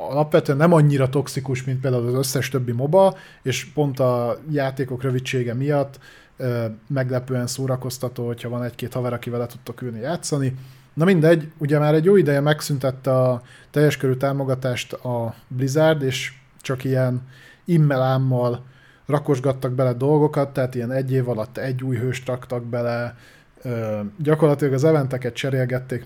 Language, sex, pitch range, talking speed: Hungarian, male, 120-140 Hz, 145 wpm